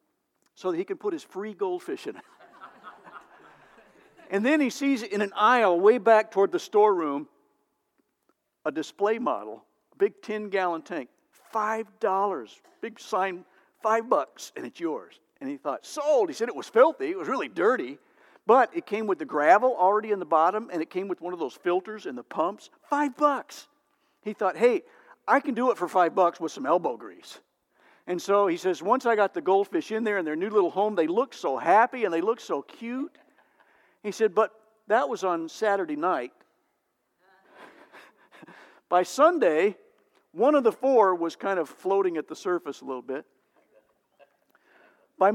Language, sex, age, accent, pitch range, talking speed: English, male, 60-79, American, 190-290 Hz, 180 wpm